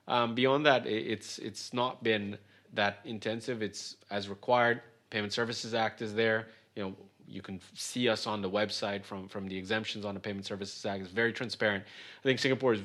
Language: English